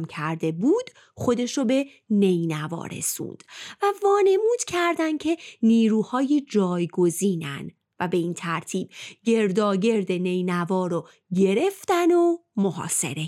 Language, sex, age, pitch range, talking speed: Persian, female, 30-49, 190-295 Hz, 105 wpm